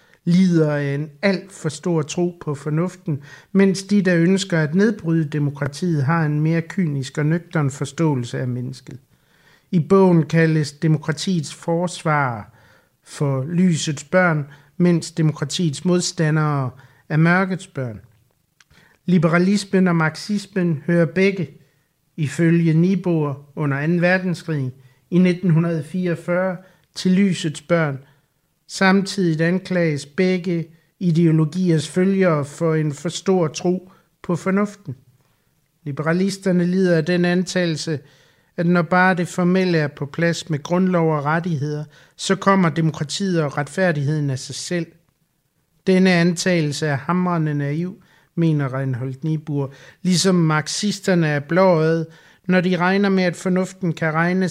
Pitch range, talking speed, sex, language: 150-180 Hz, 120 wpm, male, Danish